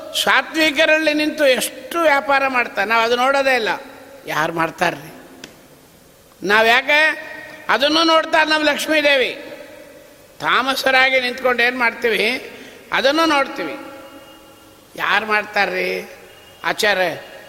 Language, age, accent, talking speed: Kannada, 60-79, native, 95 wpm